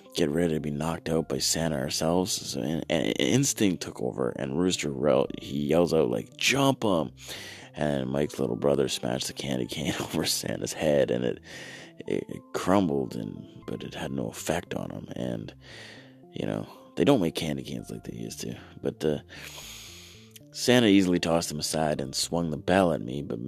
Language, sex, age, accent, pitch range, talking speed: English, male, 30-49, American, 70-90 Hz, 190 wpm